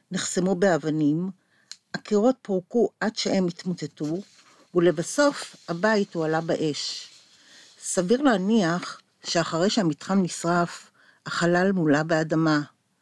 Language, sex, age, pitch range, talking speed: Hebrew, female, 50-69, 160-210 Hz, 90 wpm